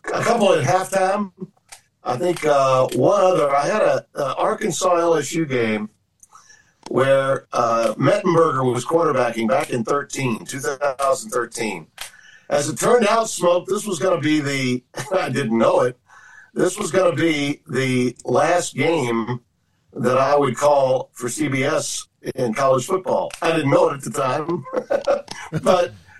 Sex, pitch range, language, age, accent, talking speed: male, 125-175 Hz, English, 50-69, American, 150 wpm